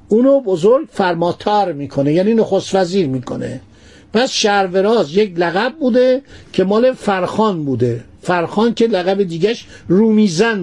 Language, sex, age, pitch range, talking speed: Persian, male, 50-69, 165-215 Hz, 125 wpm